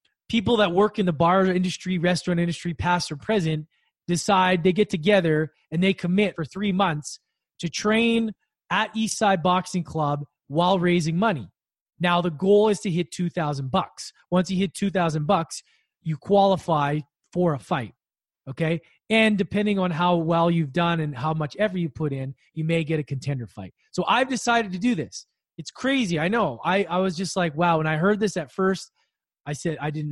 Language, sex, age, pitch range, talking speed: English, male, 20-39, 155-190 Hz, 190 wpm